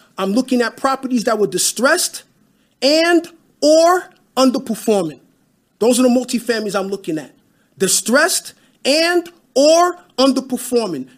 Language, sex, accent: English, male, American